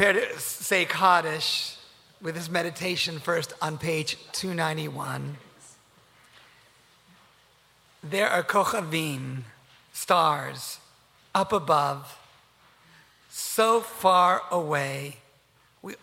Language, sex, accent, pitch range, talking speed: English, male, American, 145-180 Hz, 75 wpm